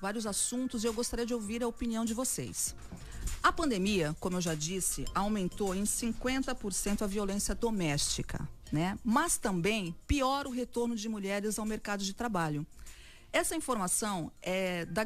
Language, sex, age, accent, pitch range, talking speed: Portuguese, female, 40-59, Brazilian, 185-245 Hz, 155 wpm